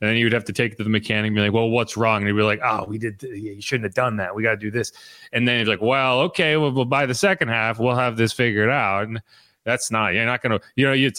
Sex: male